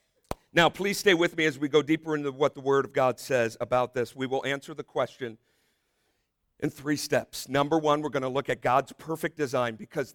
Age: 50-69